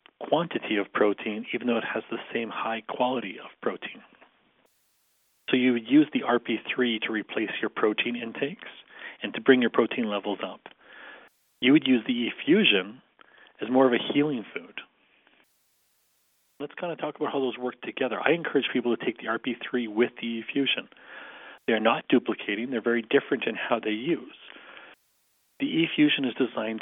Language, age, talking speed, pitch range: English, 40-59, 170 wpm, 110-135 Hz